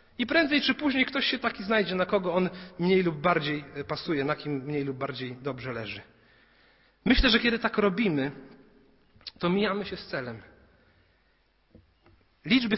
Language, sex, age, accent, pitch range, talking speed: Polish, male, 40-59, native, 175-210 Hz, 155 wpm